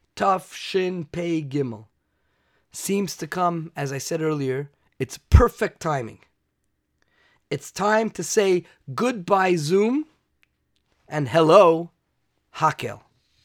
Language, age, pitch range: English, 30-49, 130-180 Hz